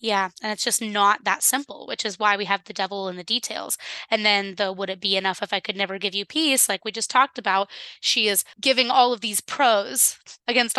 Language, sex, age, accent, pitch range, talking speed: English, female, 20-39, American, 200-250 Hz, 245 wpm